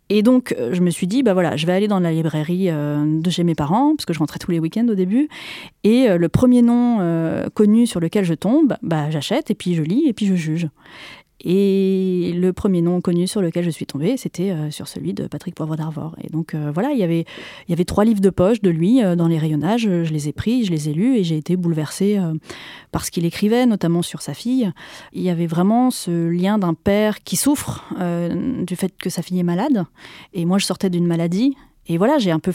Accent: French